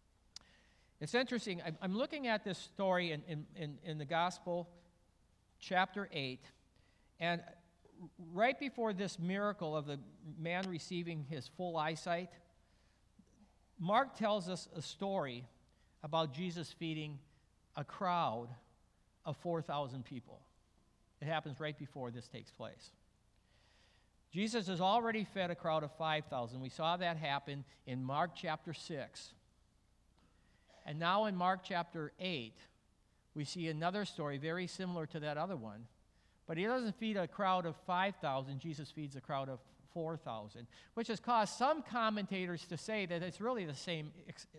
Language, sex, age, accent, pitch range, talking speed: English, male, 50-69, American, 140-180 Hz, 140 wpm